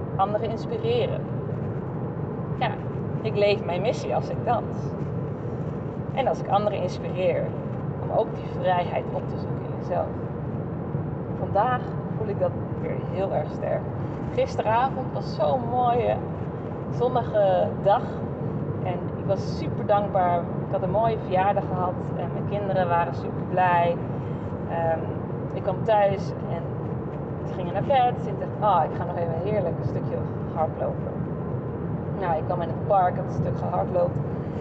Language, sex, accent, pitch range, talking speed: Dutch, female, Dutch, 145-175 Hz, 145 wpm